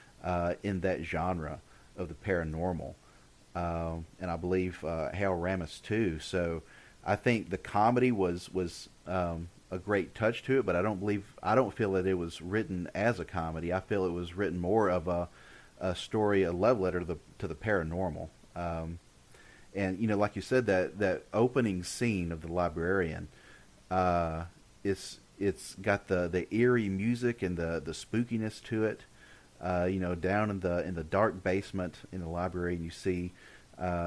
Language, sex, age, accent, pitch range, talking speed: English, male, 40-59, American, 85-100 Hz, 185 wpm